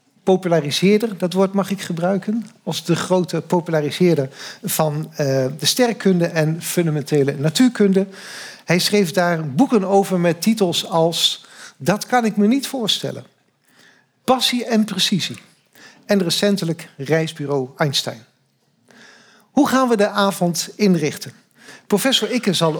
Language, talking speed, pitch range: Dutch, 125 wpm, 150-200 Hz